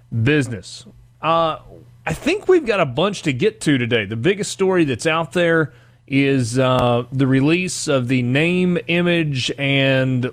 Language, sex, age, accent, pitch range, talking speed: English, male, 30-49, American, 125-150 Hz, 155 wpm